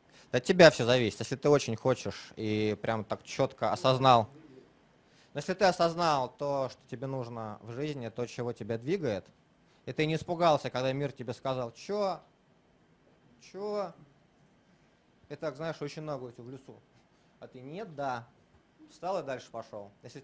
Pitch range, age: 115-150 Hz, 20-39